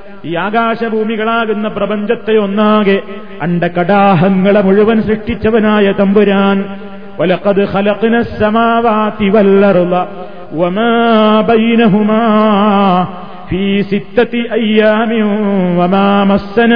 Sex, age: male, 30-49